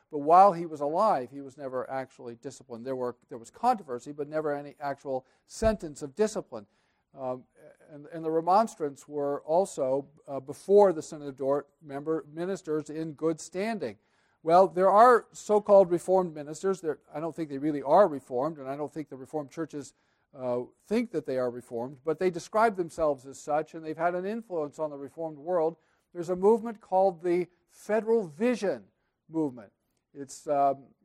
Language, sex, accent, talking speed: English, male, American, 180 wpm